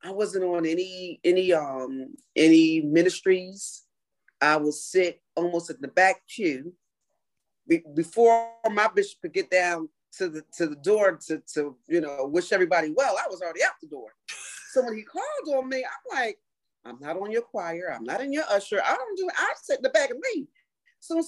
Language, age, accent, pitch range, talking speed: English, 40-59, American, 155-250 Hz, 195 wpm